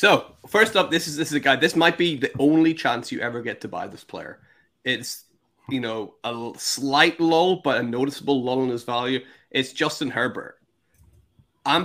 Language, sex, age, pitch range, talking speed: English, male, 20-39, 125-150 Hz, 195 wpm